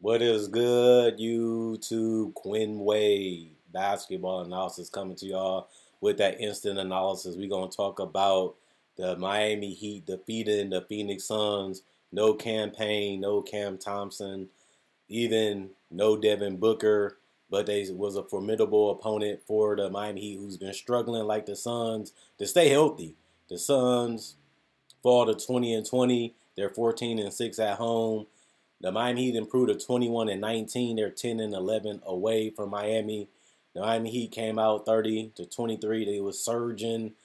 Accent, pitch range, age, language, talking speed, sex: American, 100-110 Hz, 30-49, English, 145 wpm, male